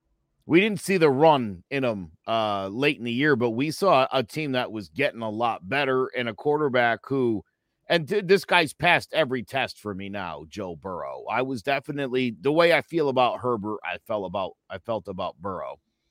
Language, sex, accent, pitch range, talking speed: English, male, American, 120-185 Hz, 205 wpm